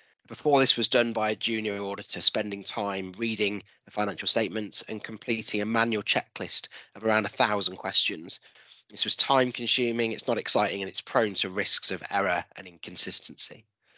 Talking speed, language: 170 wpm, English